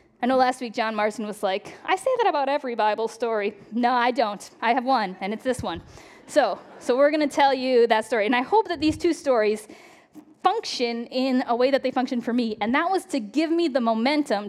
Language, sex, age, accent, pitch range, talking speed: English, female, 10-29, American, 225-300 Hz, 240 wpm